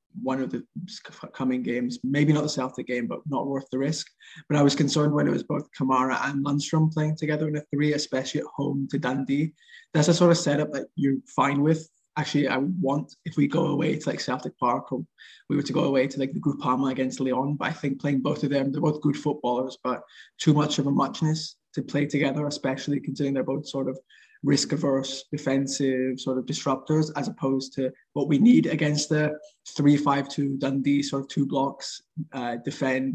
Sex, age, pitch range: male, 20-39, 135-155 Hz